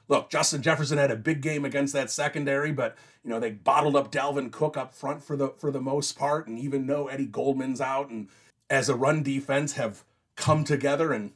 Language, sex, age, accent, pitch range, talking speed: English, male, 30-49, American, 135-160 Hz, 215 wpm